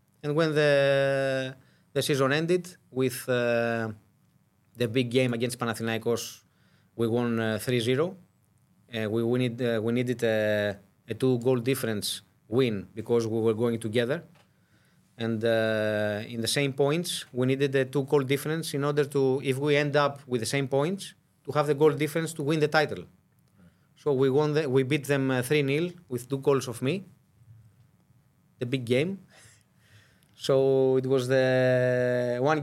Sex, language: male, English